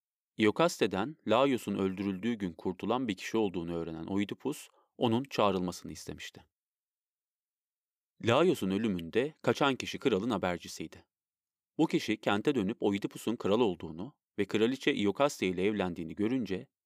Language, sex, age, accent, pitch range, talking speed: Turkish, male, 40-59, native, 95-115 Hz, 115 wpm